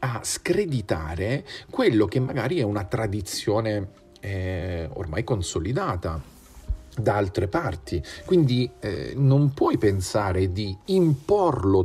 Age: 40-59